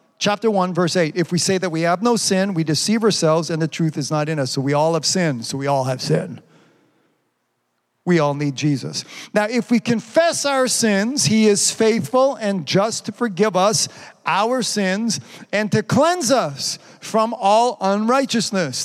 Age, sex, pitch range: 50-69, male, 165-210 Hz